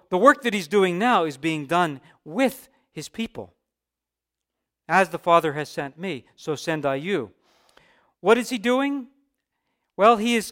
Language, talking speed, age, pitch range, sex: English, 165 wpm, 50-69, 160-225 Hz, male